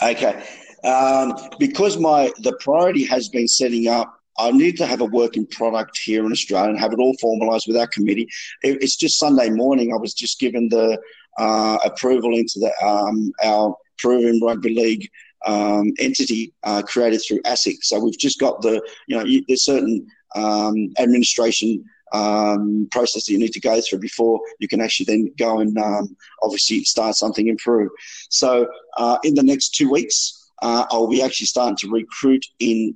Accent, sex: Australian, male